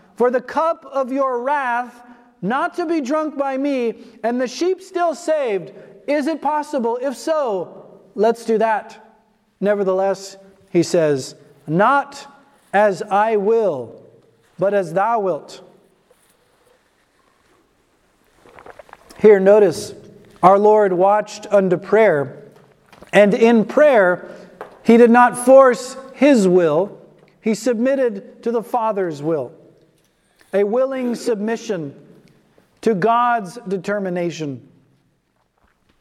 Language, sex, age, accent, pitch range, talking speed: English, male, 40-59, American, 195-255 Hz, 105 wpm